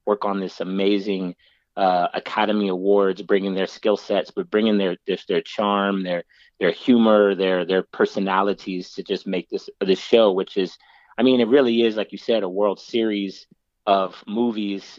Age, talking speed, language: 30-49, 175 wpm, English